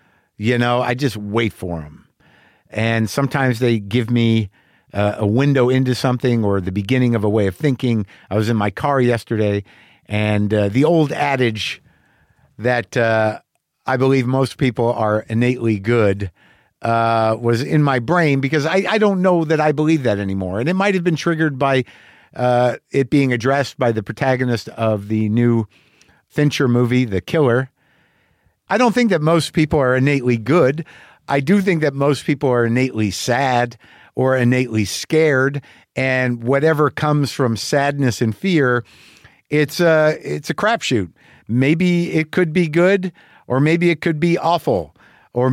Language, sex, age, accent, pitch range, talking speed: English, male, 50-69, American, 115-150 Hz, 165 wpm